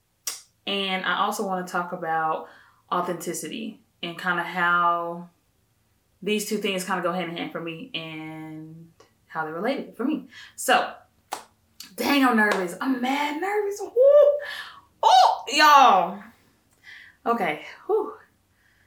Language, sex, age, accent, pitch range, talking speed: English, female, 20-39, American, 165-245 Hz, 125 wpm